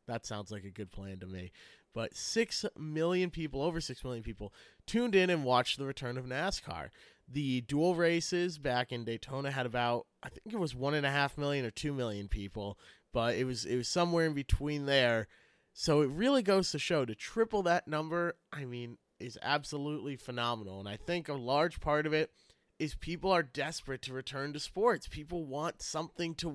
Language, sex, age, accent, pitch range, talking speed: English, male, 30-49, American, 130-160 Hz, 190 wpm